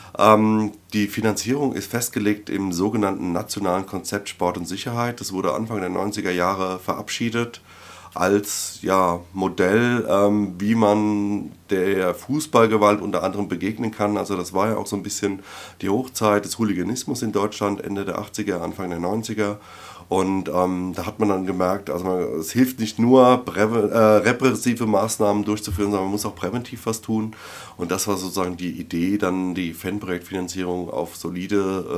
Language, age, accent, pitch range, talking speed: German, 30-49, German, 95-110 Hz, 160 wpm